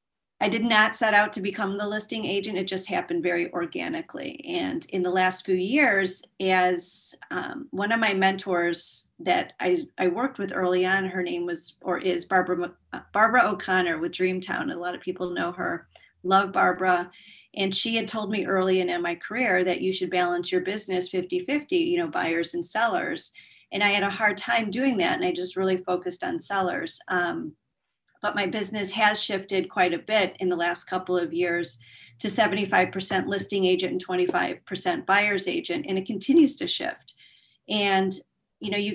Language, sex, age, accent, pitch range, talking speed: English, female, 40-59, American, 180-215 Hz, 185 wpm